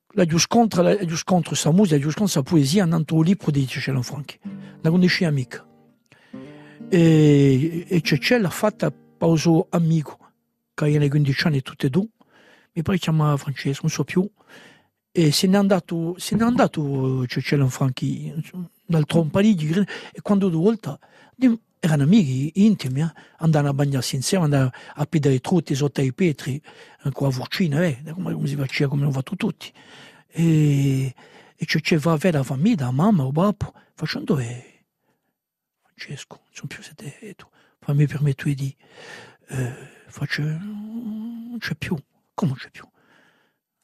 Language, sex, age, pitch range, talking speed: French, male, 60-79, 140-180 Hz, 155 wpm